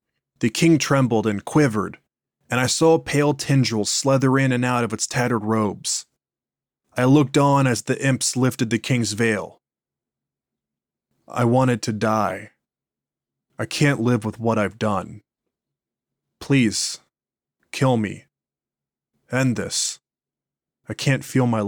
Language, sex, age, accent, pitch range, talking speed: English, male, 20-39, American, 110-130 Hz, 135 wpm